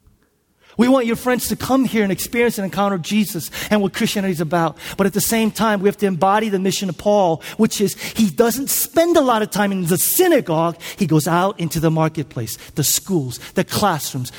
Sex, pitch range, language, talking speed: male, 170-215 Hz, English, 215 wpm